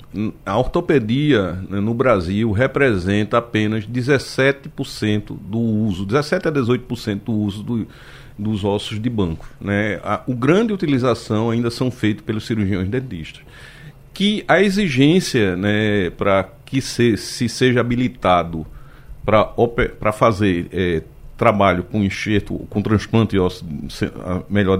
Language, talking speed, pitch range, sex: Portuguese, 130 wpm, 105-135 Hz, male